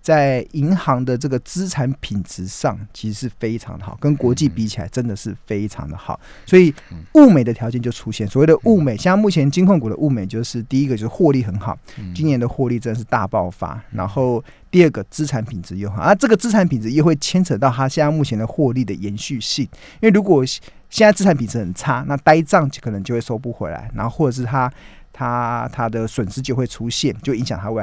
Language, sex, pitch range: Chinese, male, 110-150 Hz